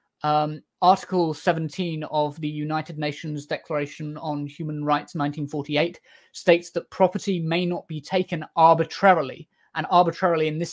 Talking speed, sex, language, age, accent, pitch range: 135 wpm, male, English, 30-49, British, 150-175 Hz